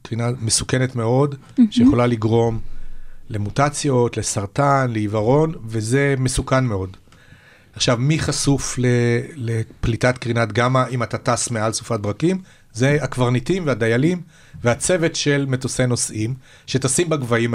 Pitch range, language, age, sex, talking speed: 115-145 Hz, Hebrew, 40-59, male, 110 wpm